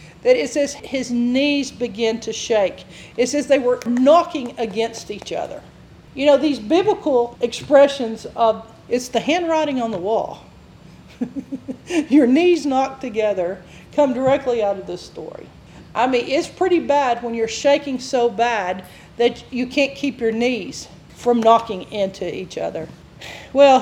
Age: 40-59